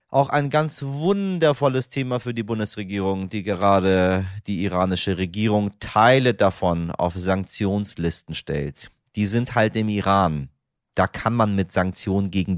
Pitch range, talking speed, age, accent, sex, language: 90-115 Hz, 140 wpm, 30-49, German, male, German